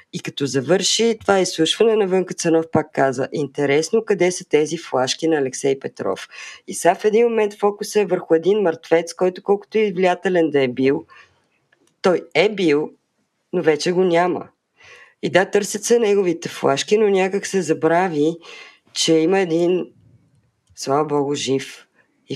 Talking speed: 160 wpm